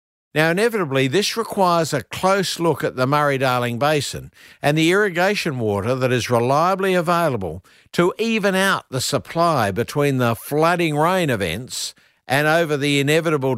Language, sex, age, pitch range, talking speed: English, male, 60-79, 120-165 Hz, 145 wpm